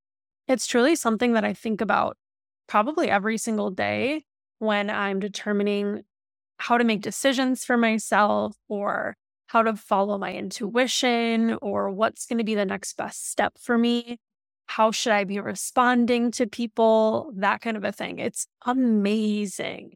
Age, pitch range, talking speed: 20-39, 205-240 Hz, 155 wpm